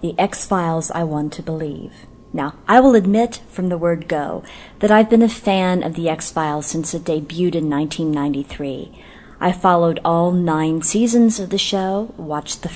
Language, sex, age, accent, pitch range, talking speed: English, female, 40-59, American, 160-215 Hz, 175 wpm